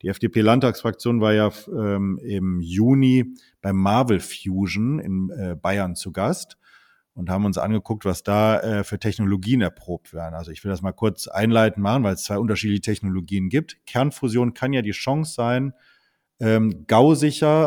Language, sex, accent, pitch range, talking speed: German, male, German, 95-125 Hz, 165 wpm